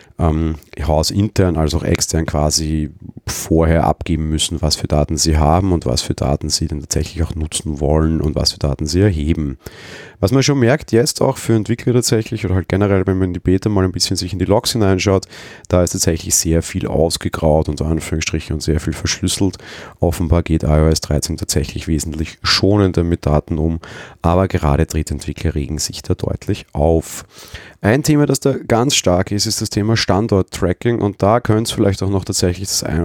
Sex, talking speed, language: male, 190 wpm, German